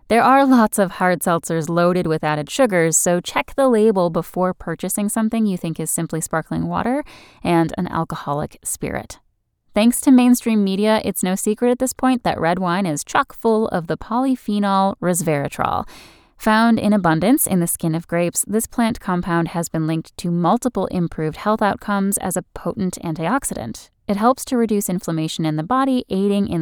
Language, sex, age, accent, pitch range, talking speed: English, female, 10-29, American, 165-220 Hz, 180 wpm